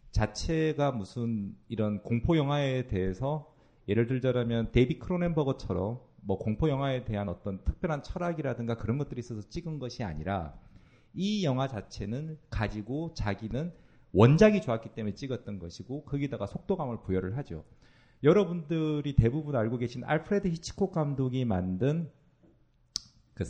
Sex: male